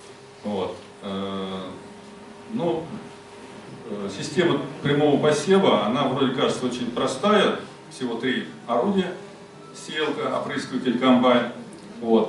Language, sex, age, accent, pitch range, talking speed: Russian, male, 40-59, native, 125-195 Hz, 85 wpm